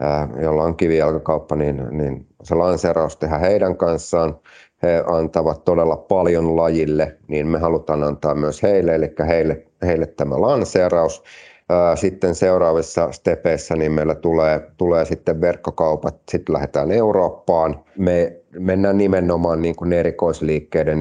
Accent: native